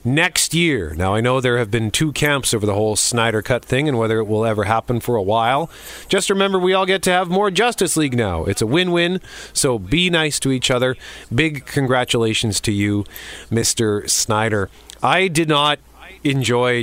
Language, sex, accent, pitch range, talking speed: English, male, American, 110-150 Hz, 195 wpm